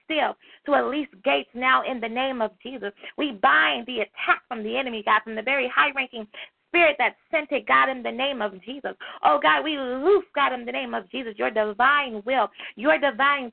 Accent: American